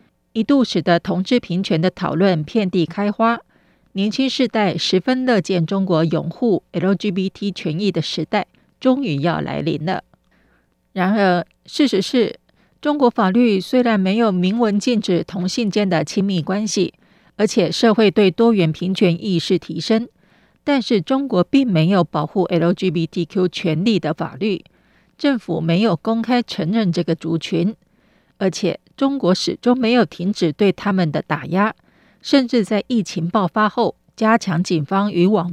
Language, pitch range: Chinese, 175-225 Hz